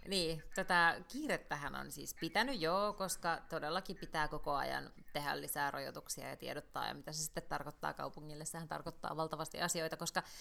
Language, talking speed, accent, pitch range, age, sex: Finnish, 160 wpm, native, 150-200 Hz, 30-49, female